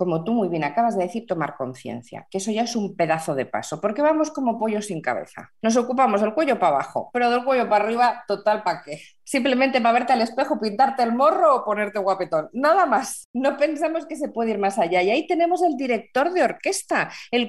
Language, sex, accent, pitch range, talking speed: Spanish, female, Spanish, 175-250 Hz, 225 wpm